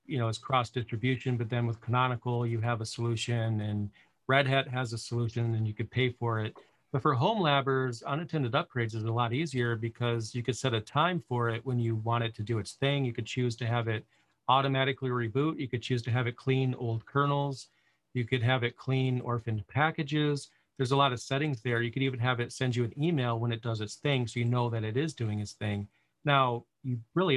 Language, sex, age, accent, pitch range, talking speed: Russian, male, 40-59, American, 115-140 Hz, 230 wpm